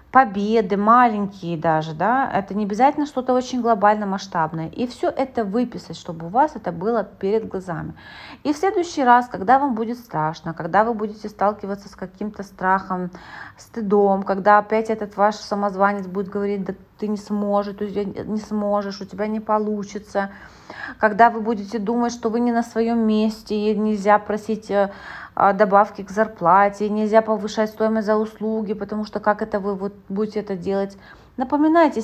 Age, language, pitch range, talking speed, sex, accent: 30-49, Russian, 195-230 Hz, 160 wpm, female, native